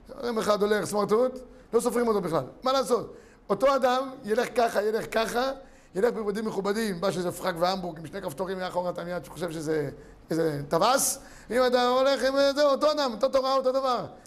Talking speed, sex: 180 wpm, male